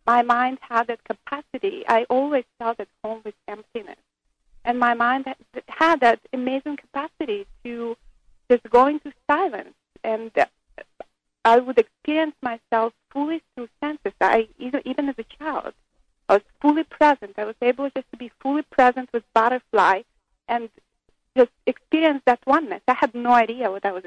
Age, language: 40-59, English